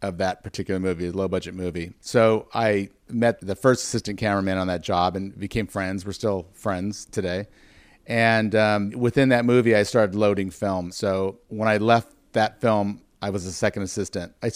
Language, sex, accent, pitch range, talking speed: English, male, American, 95-115 Hz, 190 wpm